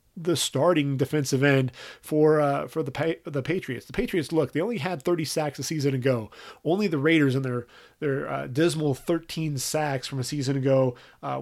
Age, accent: 30-49, American